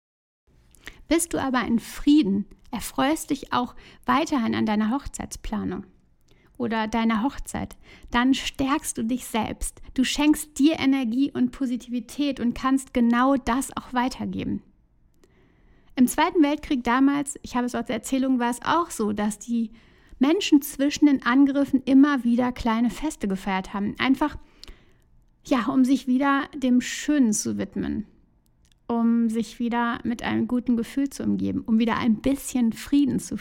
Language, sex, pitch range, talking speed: German, female, 230-275 Hz, 145 wpm